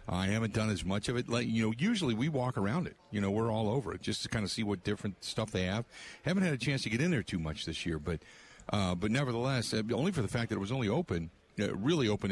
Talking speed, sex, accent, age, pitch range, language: 295 wpm, male, American, 50-69, 95-125 Hz, English